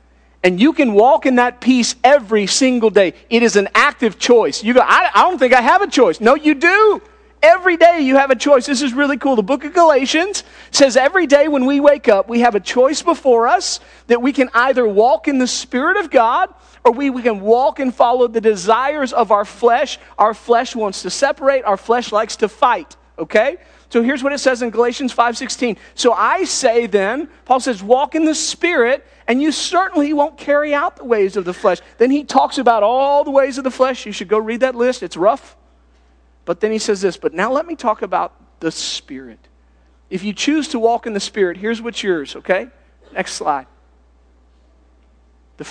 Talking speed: 215 wpm